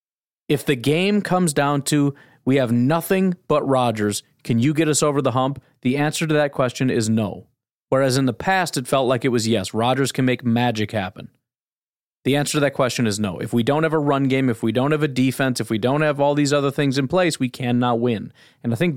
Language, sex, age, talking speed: English, male, 30-49, 240 wpm